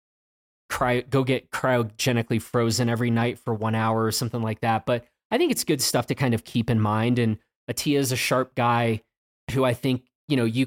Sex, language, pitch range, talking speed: male, English, 110-135 Hz, 215 wpm